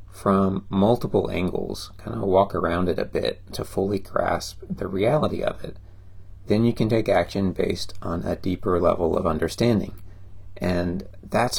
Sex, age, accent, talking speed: male, 30-49, American, 160 wpm